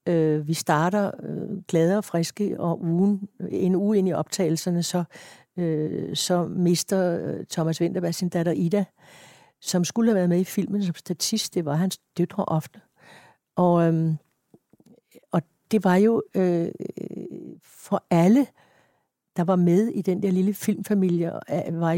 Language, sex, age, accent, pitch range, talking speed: Danish, female, 60-79, native, 175-205 Hz, 155 wpm